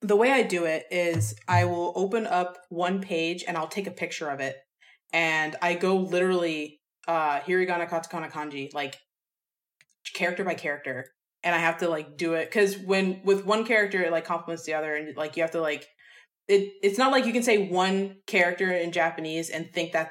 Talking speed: 205 wpm